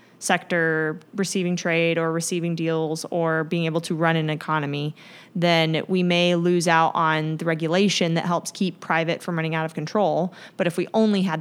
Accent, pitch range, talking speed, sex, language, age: American, 160-180 Hz, 185 wpm, female, English, 20-39